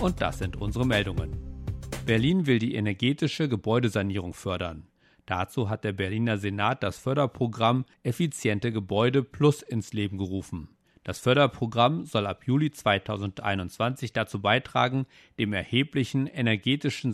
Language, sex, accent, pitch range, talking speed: English, male, German, 100-125 Hz, 125 wpm